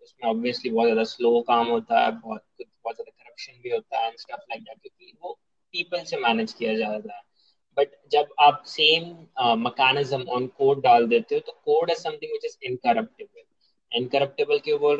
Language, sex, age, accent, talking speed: Hindi, male, 20-39, native, 100 wpm